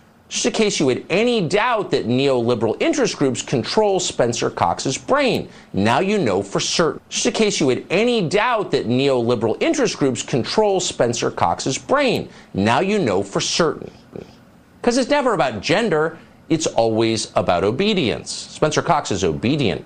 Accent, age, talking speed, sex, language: American, 50-69, 160 wpm, male, English